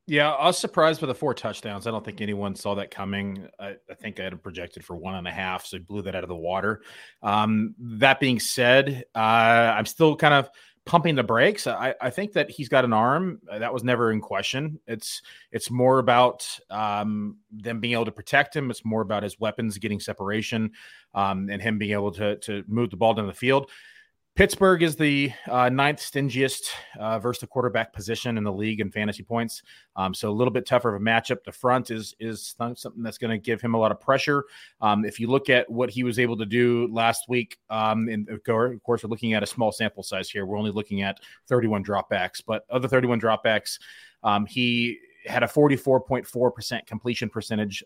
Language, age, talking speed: English, 30-49, 215 wpm